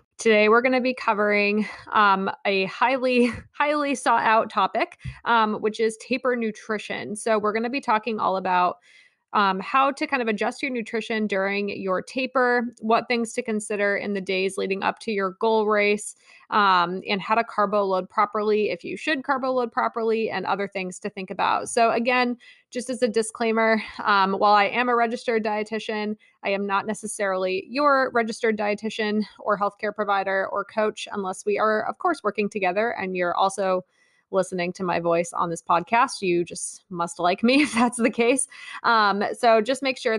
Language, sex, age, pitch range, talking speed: English, female, 20-39, 195-245 Hz, 185 wpm